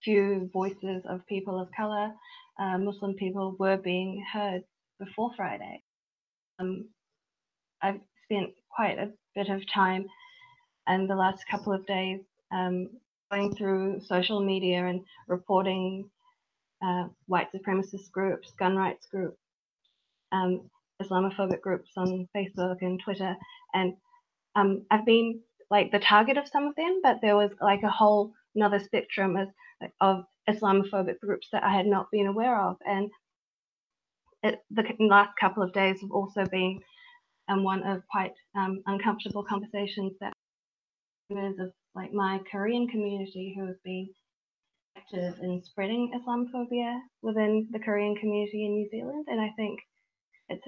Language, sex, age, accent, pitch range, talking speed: English, female, 20-39, Australian, 190-210 Hz, 140 wpm